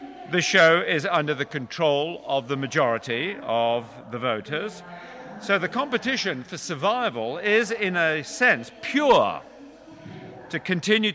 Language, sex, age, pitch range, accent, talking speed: Italian, male, 50-69, 155-220 Hz, British, 130 wpm